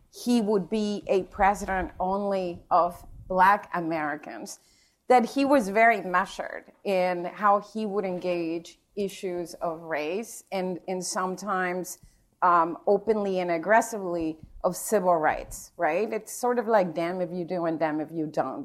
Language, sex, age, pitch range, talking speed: English, female, 30-49, 180-215 Hz, 150 wpm